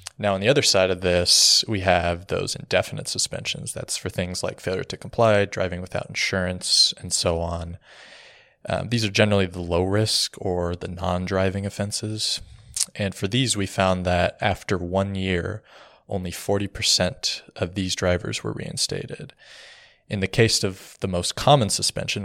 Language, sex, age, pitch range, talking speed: English, male, 20-39, 90-110 Hz, 160 wpm